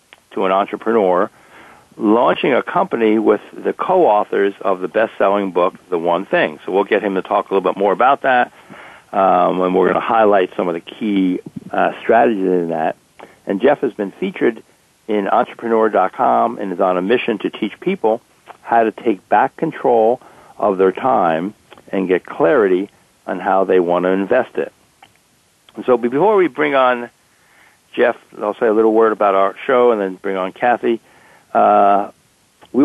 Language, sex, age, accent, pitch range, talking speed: English, male, 60-79, American, 95-110 Hz, 180 wpm